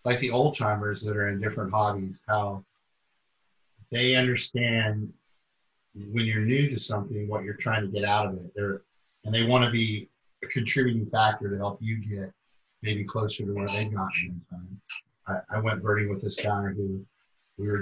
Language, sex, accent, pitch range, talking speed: English, male, American, 105-120 Hz, 175 wpm